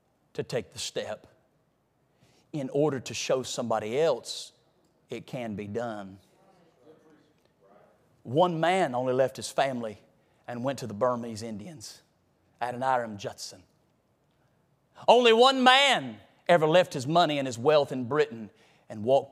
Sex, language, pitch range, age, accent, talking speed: male, English, 125-190 Hz, 40-59, American, 130 wpm